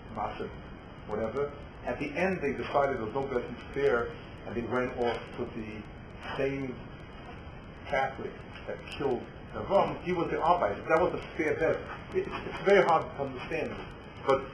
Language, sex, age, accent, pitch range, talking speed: English, male, 50-69, American, 115-140 Hz, 165 wpm